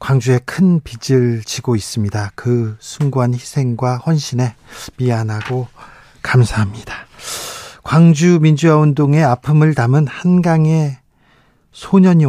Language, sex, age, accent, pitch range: Korean, male, 40-59, native, 120-140 Hz